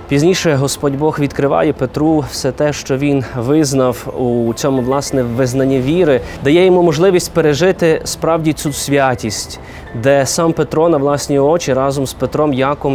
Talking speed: 150 wpm